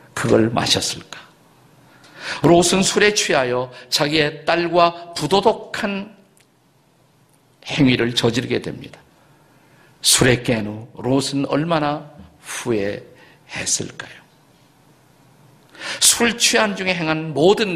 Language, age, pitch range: Korean, 50-69, 115-155 Hz